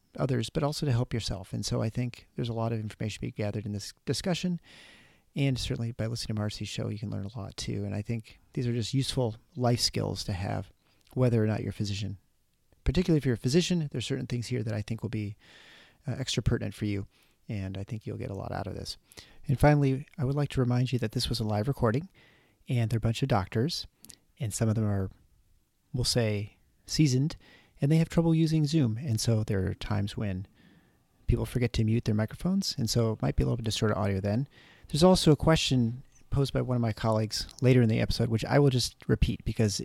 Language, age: English, 40-59